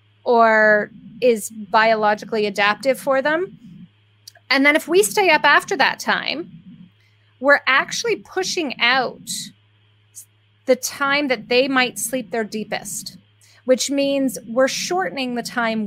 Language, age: English, 30-49